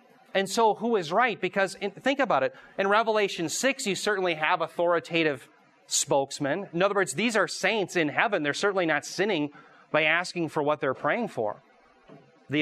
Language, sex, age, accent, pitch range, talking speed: English, male, 30-49, American, 150-205 Hz, 175 wpm